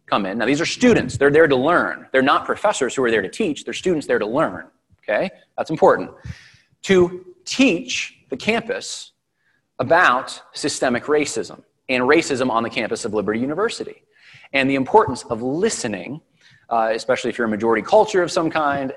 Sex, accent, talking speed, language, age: male, American, 175 wpm, English, 30-49